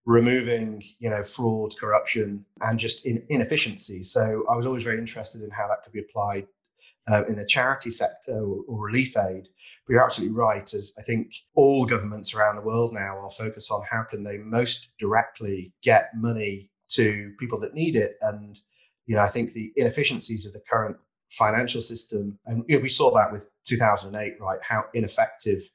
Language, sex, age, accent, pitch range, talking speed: English, male, 30-49, British, 105-120 Hz, 185 wpm